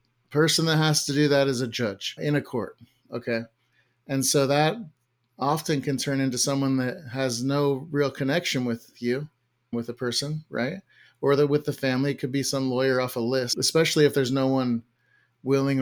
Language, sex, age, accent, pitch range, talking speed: English, male, 30-49, American, 120-135 Hz, 190 wpm